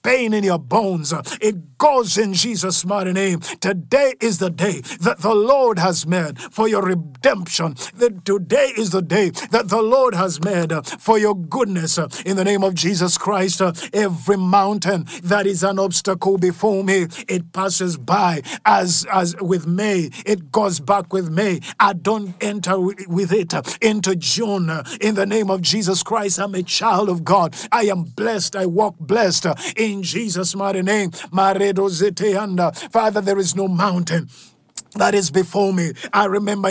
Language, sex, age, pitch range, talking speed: English, male, 50-69, 180-210 Hz, 165 wpm